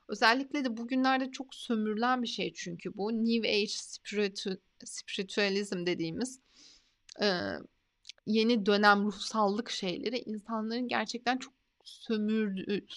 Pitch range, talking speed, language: 210-260 Hz, 95 wpm, Turkish